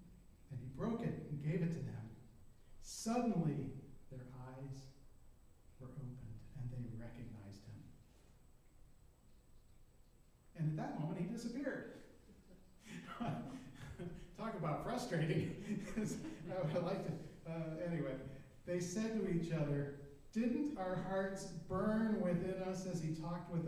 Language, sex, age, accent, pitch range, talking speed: English, male, 40-59, American, 140-175 Hz, 115 wpm